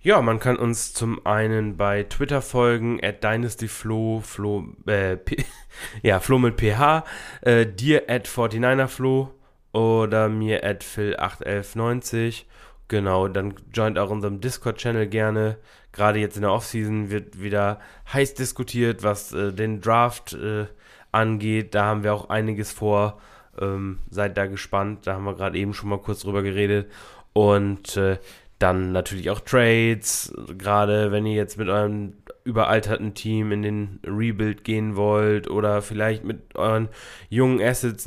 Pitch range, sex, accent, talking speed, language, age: 100-115 Hz, male, German, 145 wpm, German, 20-39